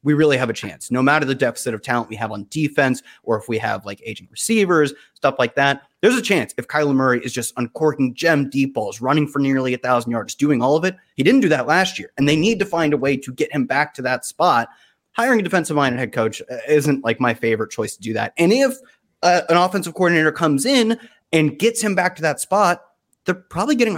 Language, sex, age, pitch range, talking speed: English, male, 30-49, 120-160 Hz, 250 wpm